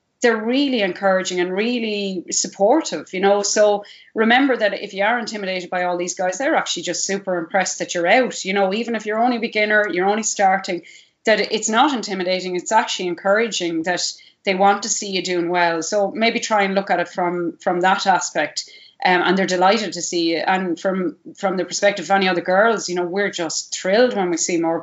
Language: English